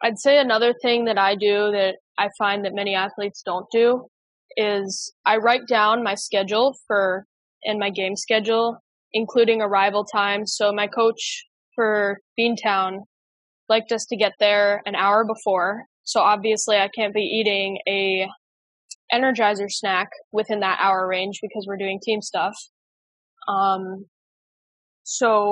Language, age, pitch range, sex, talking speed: English, 10-29, 200-225 Hz, female, 145 wpm